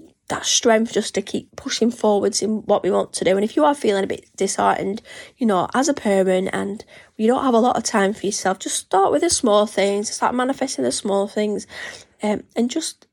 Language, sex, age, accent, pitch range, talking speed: English, female, 10-29, British, 210-250 Hz, 230 wpm